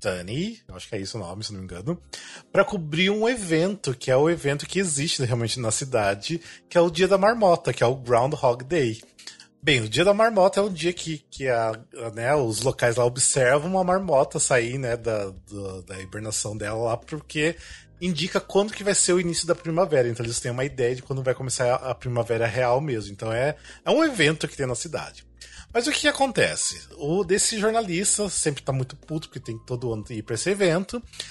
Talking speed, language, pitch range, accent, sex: 215 wpm, Portuguese, 125-185 Hz, Brazilian, male